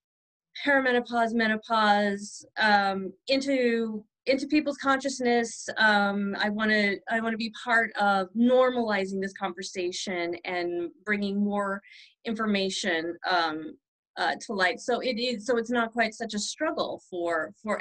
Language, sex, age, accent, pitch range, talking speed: English, female, 30-49, American, 190-240 Hz, 130 wpm